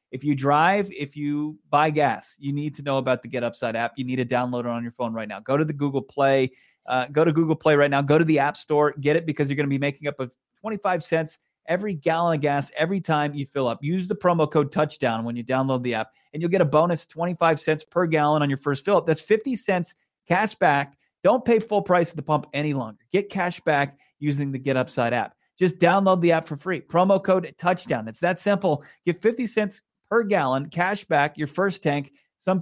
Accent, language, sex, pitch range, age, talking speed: American, English, male, 135-175 Hz, 30-49, 240 wpm